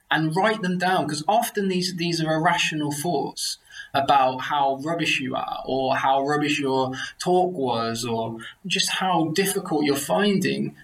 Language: English